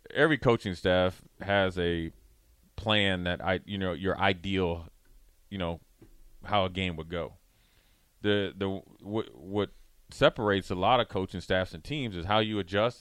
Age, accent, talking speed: 30-49, American, 160 wpm